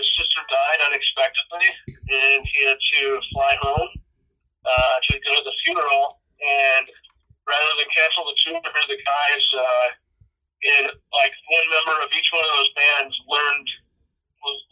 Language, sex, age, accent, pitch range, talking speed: English, male, 40-59, American, 130-220 Hz, 145 wpm